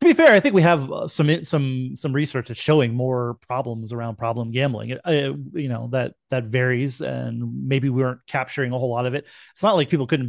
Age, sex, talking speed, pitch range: 30-49, male, 220 wpm, 120-145 Hz